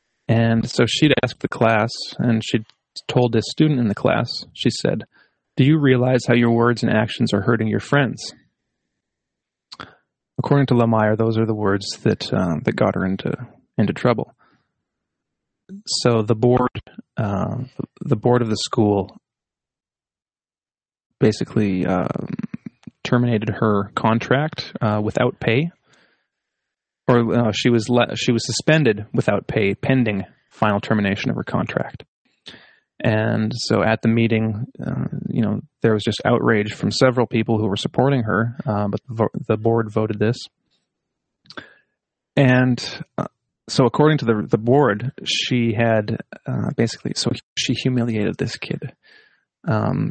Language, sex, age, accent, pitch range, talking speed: English, male, 30-49, American, 110-125 Hz, 145 wpm